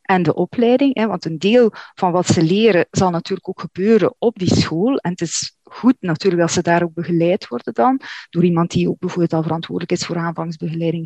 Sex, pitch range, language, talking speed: female, 170-210 Hz, Dutch, 210 wpm